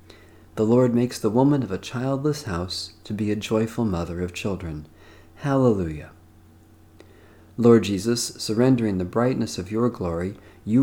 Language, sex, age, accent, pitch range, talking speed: English, male, 40-59, American, 95-125 Hz, 145 wpm